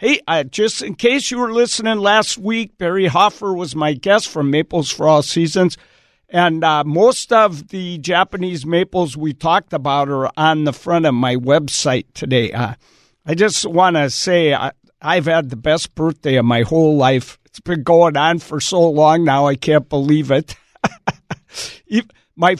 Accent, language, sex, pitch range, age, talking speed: American, English, male, 140-185 Hz, 60-79, 175 wpm